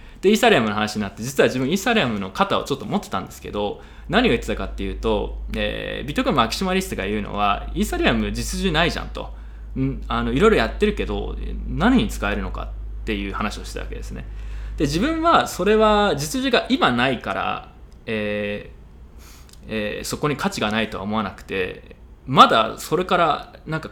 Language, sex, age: Japanese, male, 20-39